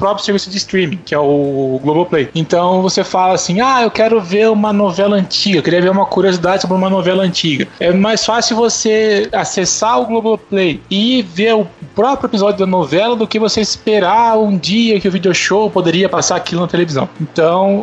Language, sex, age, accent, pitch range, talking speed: Portuguese, male, 20-39, Brazilian, 170-215 Hz, 200 wpm